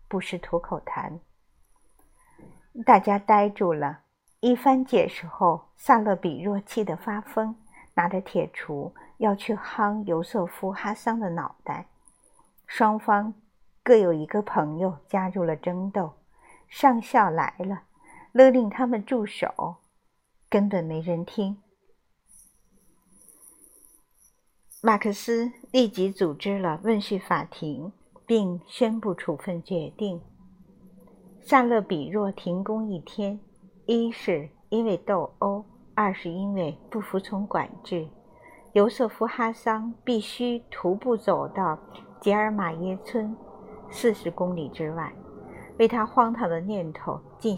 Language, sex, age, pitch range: Chinese, female, 50-69, 180-225 Hz